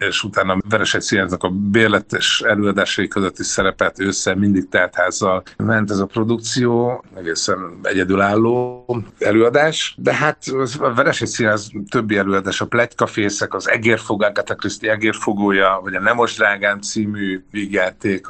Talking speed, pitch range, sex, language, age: 120 wpm, 95-115 Hz, male, Hungarian, 50-69